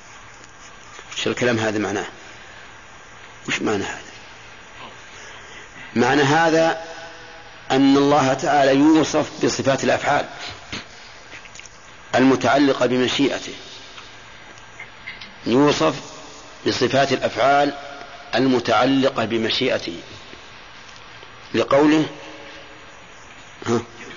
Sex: male